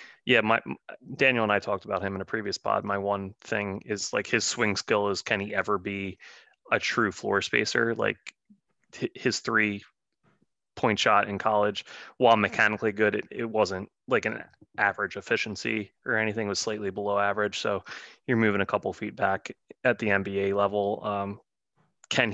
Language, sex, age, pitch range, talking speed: English, male, 20-39, 100-110 Hz, 175 wpm